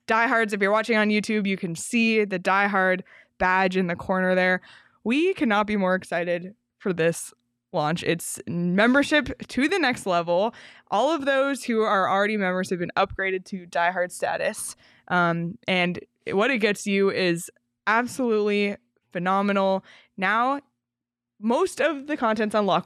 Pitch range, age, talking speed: 185-235 Hz, 20-39, 150 wpm